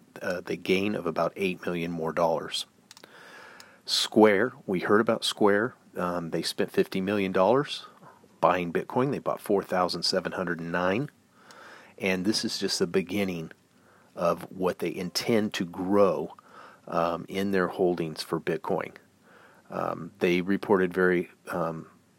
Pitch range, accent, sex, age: 85-105 Hz, American, male, 40-59